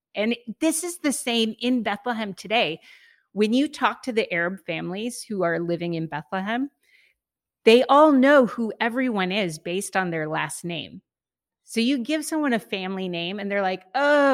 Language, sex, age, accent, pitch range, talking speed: English, female, 30-49, American, 185-240 Hz, 175 wpm